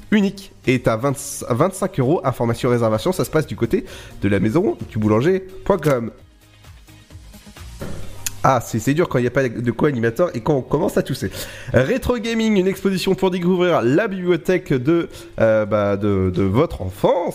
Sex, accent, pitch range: male, French, 115-180 Hz